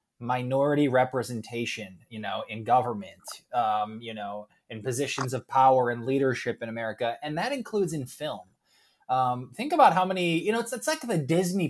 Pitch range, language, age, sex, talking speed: 130-165 Hz, English, 20-39, male, 175 wpm